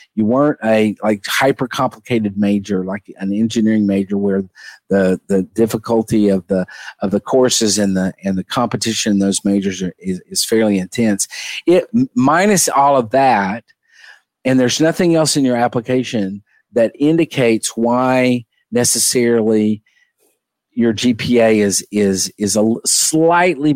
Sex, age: male, 50-69